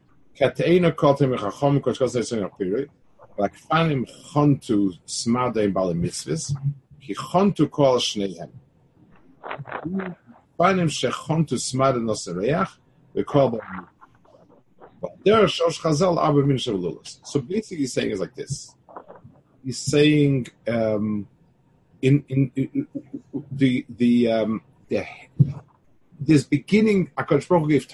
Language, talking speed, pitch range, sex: English, 45 wpm, 120-150 Hz, male